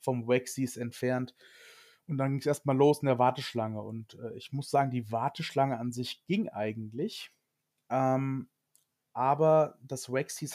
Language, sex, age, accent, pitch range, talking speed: German, male, 30-49, German, 115-135 Hz, 155 wpm